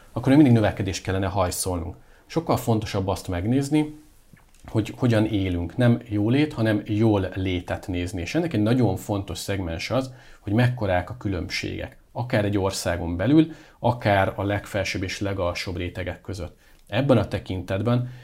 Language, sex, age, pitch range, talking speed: Hungarian, male, 40-59, 95-110 Hz, 140 wpm